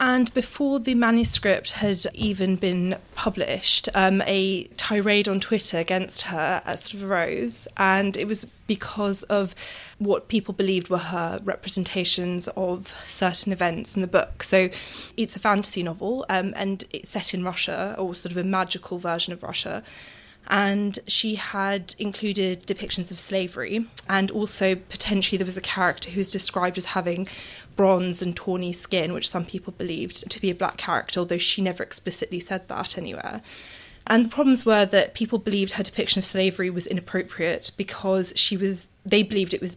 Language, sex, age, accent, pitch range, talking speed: English, female, 20-39, British, 180-205 Hz, 170 wpm